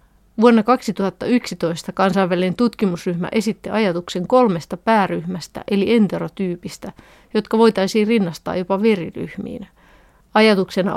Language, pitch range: Finnish, 185-215 Hz